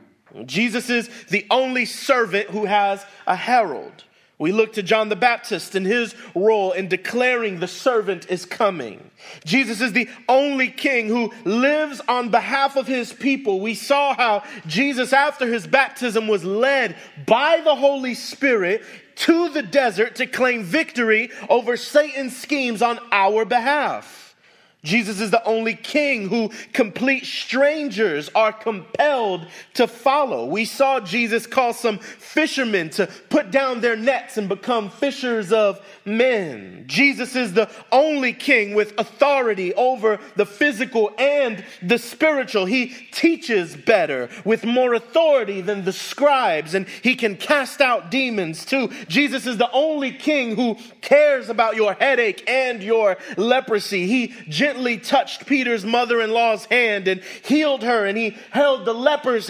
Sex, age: male, 30-49